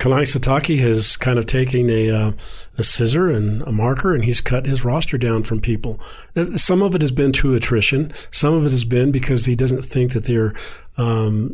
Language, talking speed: English, 205 wpm